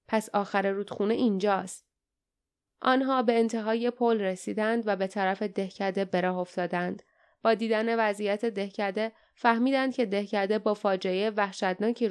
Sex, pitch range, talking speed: female, 195-230 Hz, 125 wpm